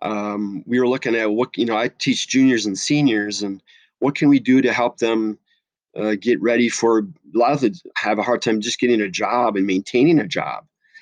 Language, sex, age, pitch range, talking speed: English, male, 30-49, 110-130 Hz, 225 wpm